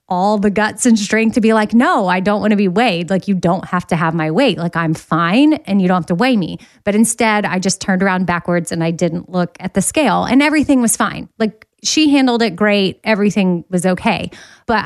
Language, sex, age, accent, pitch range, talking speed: English, female, 30-49, American, 185-230 Hz, 240 wpm